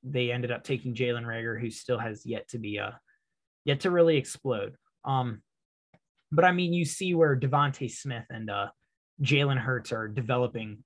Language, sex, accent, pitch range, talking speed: English, male, American, 120-145 Hz, 180 wpm